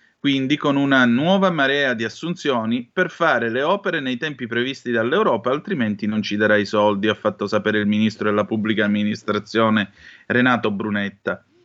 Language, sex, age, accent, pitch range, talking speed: Italian, male, 30-49, native, 110-170 Hz, 160 wpm